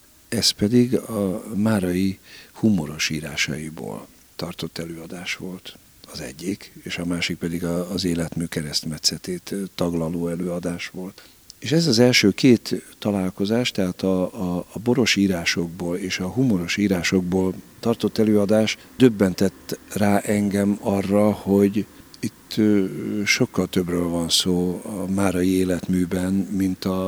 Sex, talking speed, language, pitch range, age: male, 115 wpm, Hungarian, 90-105 Hz, 50-69